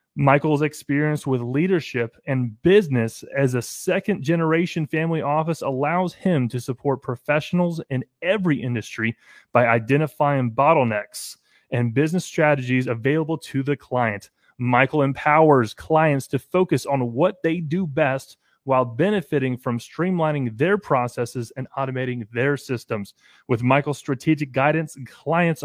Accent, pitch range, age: American, 130-175 Hz, 30-49